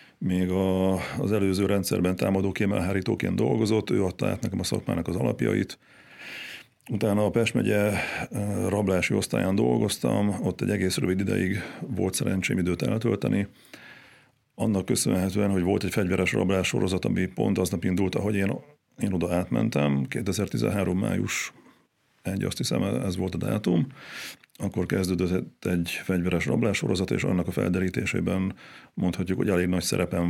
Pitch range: 90-100 Hz